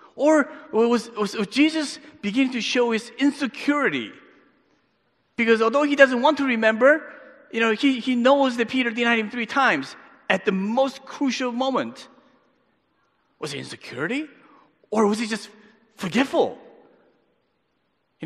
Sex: male